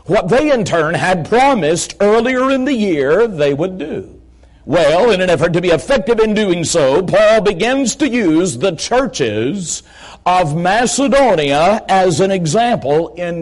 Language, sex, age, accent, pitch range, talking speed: English, male, 50-69, American, 180-235 Hz, 155 wpm